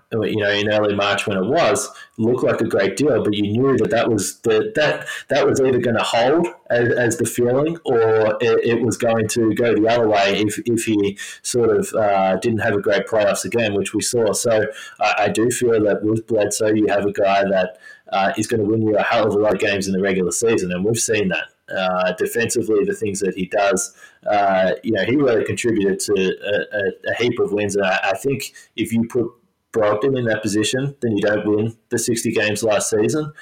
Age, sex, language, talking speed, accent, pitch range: 20-39, male, English, 235 wpm, Australian, 100-115 Hz